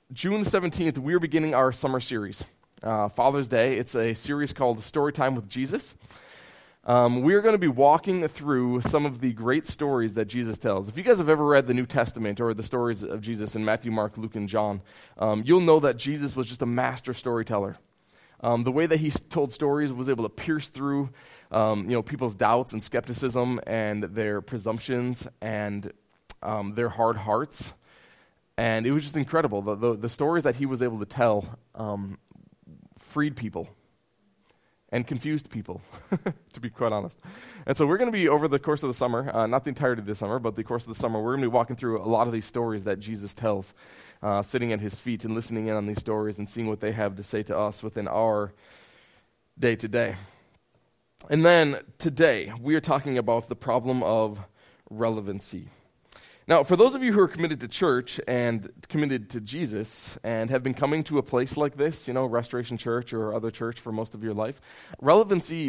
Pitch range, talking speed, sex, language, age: 110-140 Hz, 205 wpm, male, English, 20-39